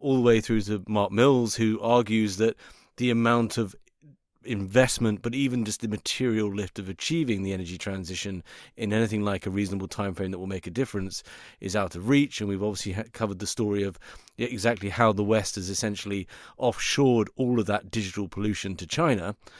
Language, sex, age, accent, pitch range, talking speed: English, male, 30-49, British, 95-115 Hz, 190 wpm